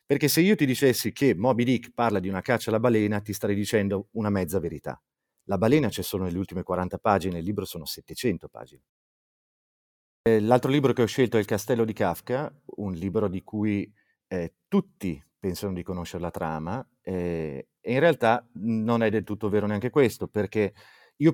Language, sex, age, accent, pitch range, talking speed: Italian, male, 30-49, native, 90-120 Hz, 190 wpm